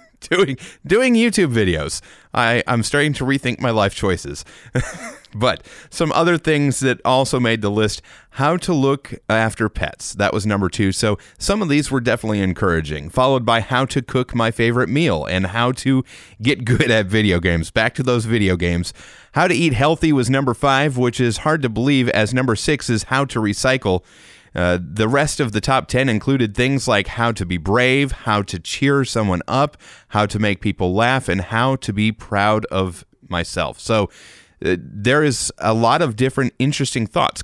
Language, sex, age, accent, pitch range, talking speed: English, male, 30-49, American, 100-135 Hz, 190 wpm